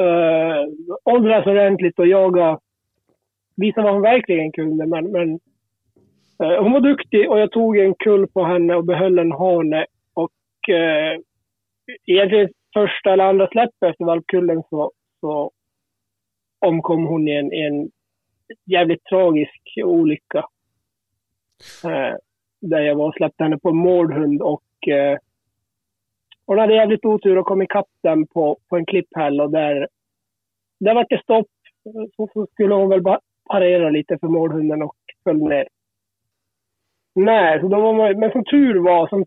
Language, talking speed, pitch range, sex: Swedish, 150 wpm, 150-205 Hz, male